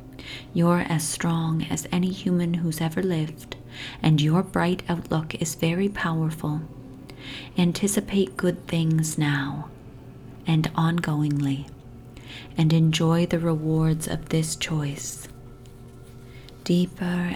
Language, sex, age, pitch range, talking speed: English, female, 30-49, 135-170 Hz, 105 wpm